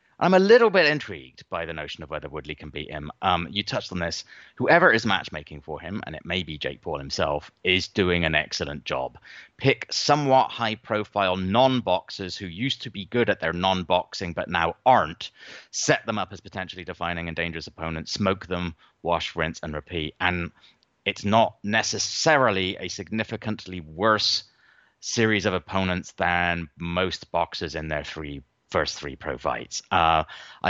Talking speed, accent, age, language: 170 wpm, British, 30-49, English